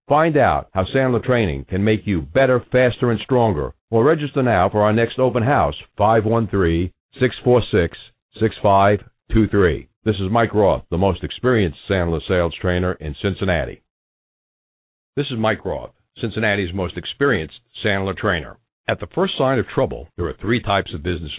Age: 60-79